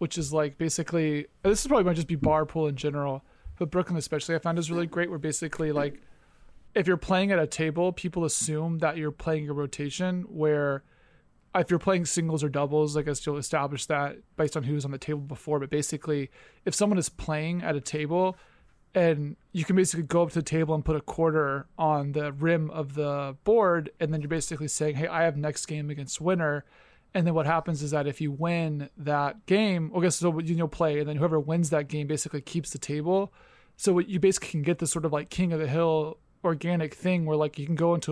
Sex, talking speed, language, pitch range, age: male, 230 wpm, English, 150-170 Hz, 20-39